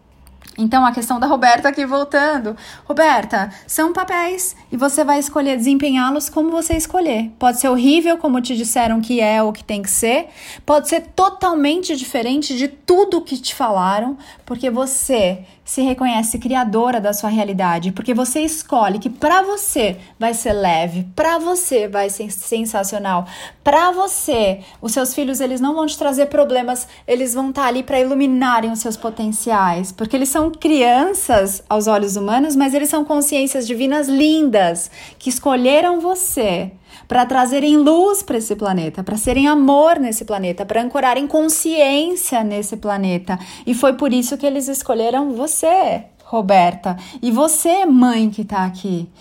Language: Portuguese